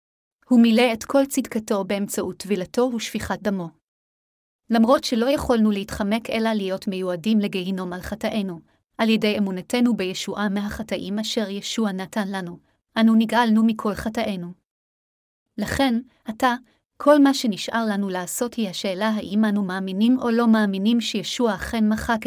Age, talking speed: 30-49, 135 wpm